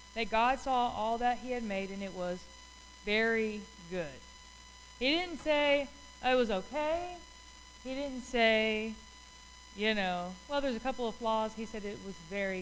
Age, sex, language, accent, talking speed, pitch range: 20-39, female, English, American, 165 wpm, 195-260 Hz